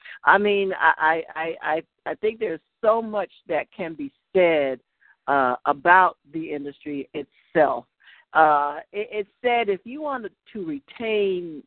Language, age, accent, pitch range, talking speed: English, 60-79, American, 160-225 Hz, 145 wpm